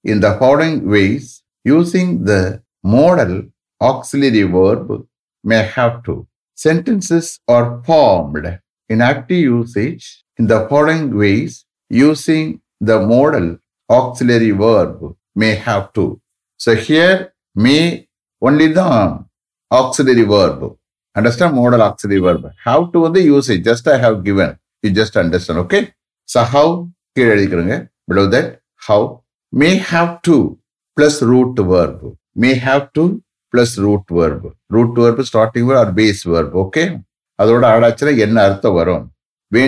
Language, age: English, 60-79